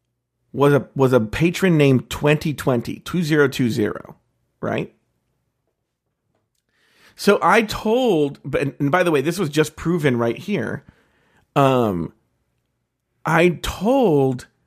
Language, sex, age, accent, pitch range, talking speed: English, male, 40-59, American, 145-220 Hz, 100 wpm